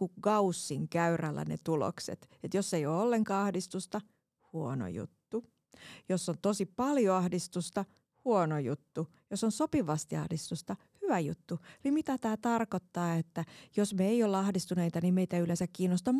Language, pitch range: Finnish, 175-215 Hz